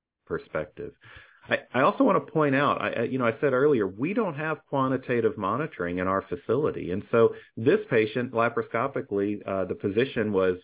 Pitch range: 90-120 Hz